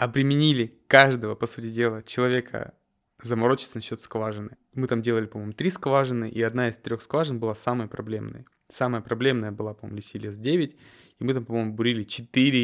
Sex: male